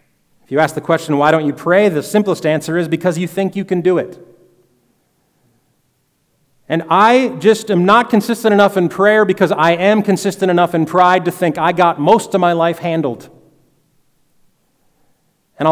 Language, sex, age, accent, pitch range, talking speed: English, male, 30-49, American, 155-200 Hz, 175 wpm